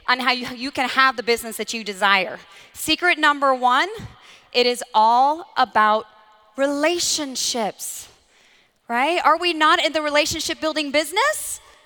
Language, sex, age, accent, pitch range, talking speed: English, female, 30-49, American, 230-310 Hz, 140 wpm